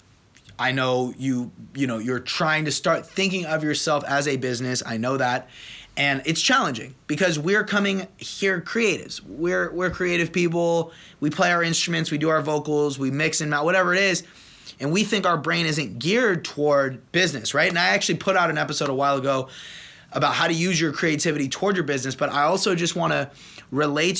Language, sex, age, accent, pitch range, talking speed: English, male, 20-39, American, 135-170 Hz, 200 wpm